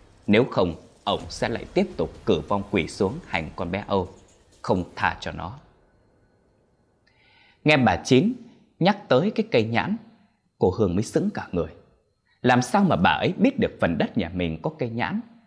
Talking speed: 180 wpm